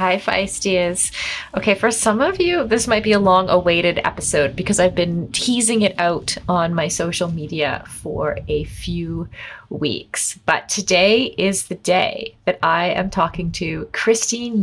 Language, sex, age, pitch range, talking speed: English, female, 30-49, 170-220 Hz, 155 wpm